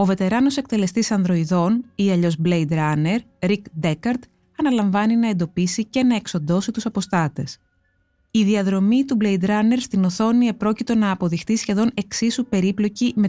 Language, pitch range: Greek, 180-230 Hz